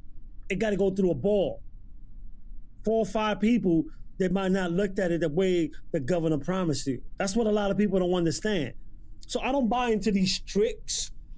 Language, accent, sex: English, American, male